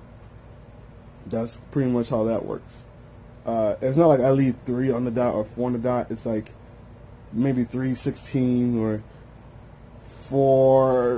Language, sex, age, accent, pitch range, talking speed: English, male, 20-39, American, 120-140 Hz, 150 wpm